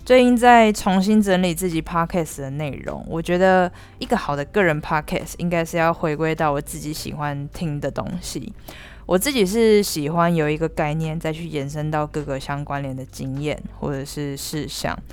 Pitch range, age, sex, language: 150-180 Hz, 20-39, female, Chinese